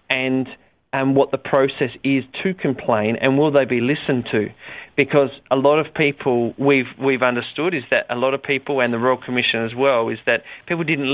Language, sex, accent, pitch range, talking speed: English, male, Australian, 125-145 Hz, 205 wpm